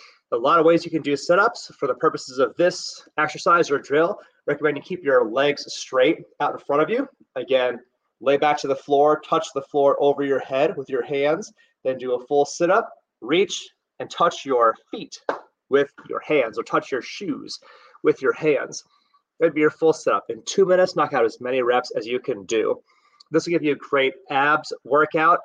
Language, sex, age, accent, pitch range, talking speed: English, male, 30-49, American, 140-215 Hz, 210 wpm